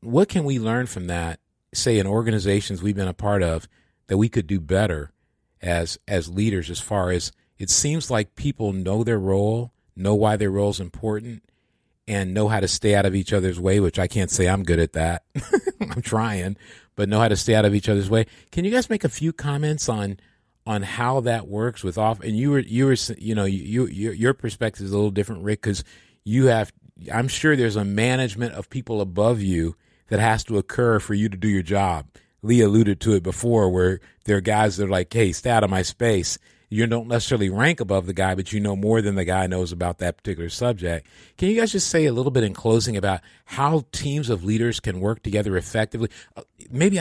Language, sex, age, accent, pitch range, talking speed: English, male, 40-59, American, 95-120 Hz, 225 wpm